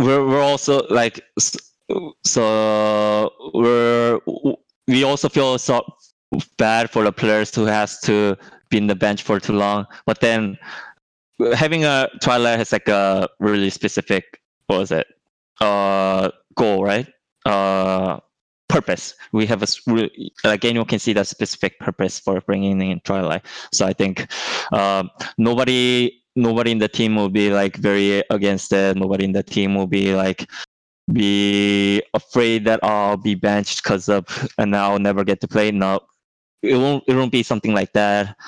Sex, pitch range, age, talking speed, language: male, 100-115 Hz, 20-39, 155 wpm, English